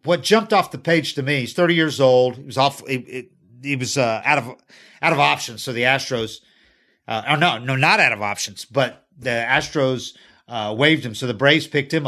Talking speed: 225 wpm